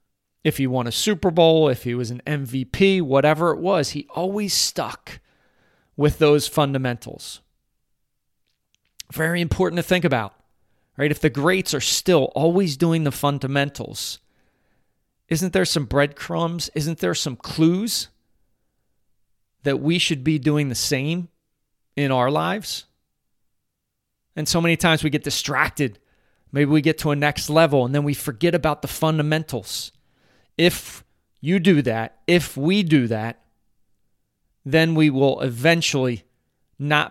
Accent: American